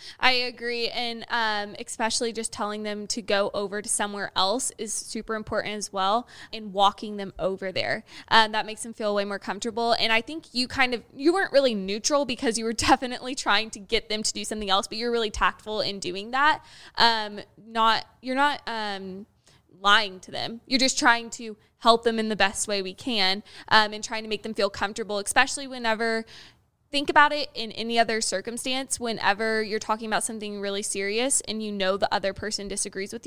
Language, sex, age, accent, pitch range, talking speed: English, female, 20-39, American, 205-240 Hz, 205 wpm